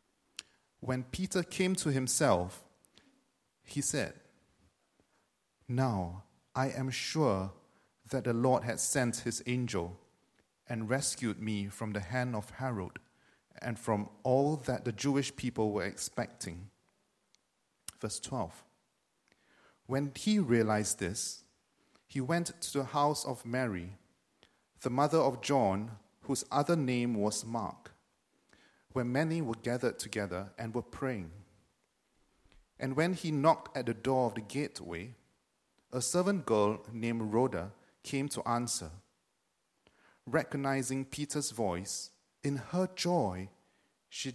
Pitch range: 105-135 Hz